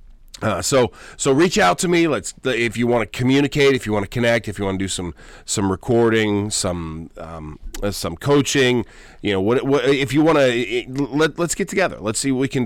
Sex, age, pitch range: male, 40-59, 95-130 Hz